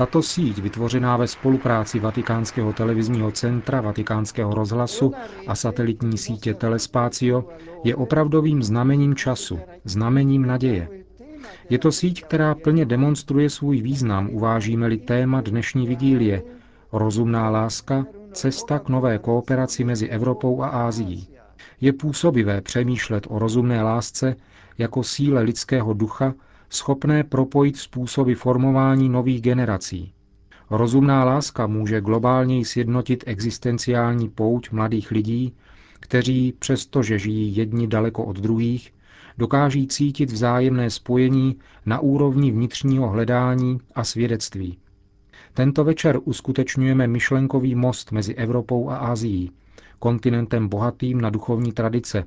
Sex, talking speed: male, 115 wpm